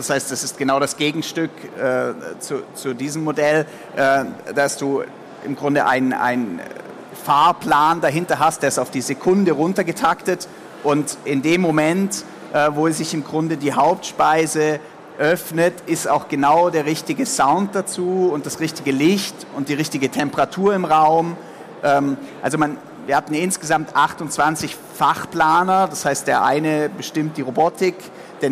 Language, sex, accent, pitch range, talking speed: German, male, German, 150-175 Hz, 150 wpm